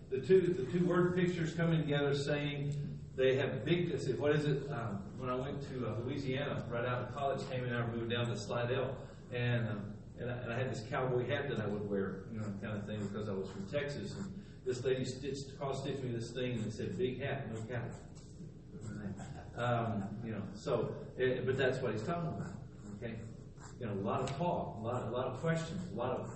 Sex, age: male, 40-59